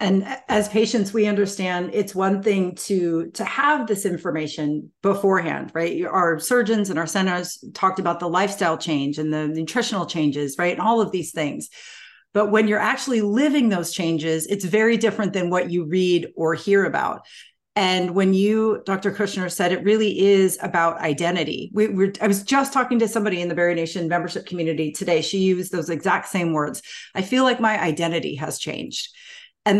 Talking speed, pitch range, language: 185 wpm, 175-215 Hz, English